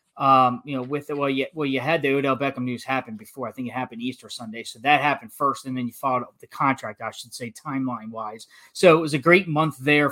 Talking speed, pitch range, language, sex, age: 260 wpm, 130-150 Hz, English, male, 20-39